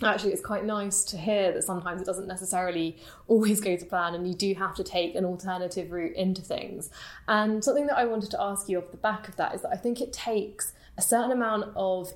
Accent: British